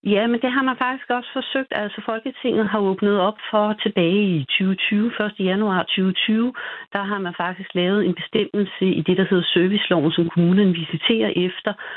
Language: Danish